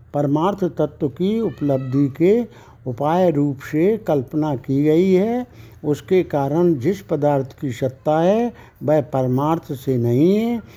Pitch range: 130-180 Hz